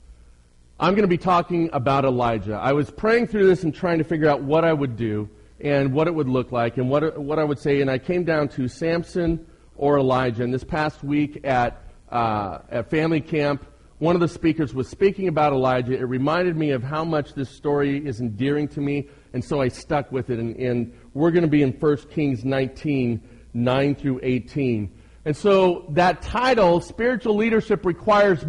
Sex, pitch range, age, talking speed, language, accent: male, 130-175 Hz, 40-59, 200 wpm, English, American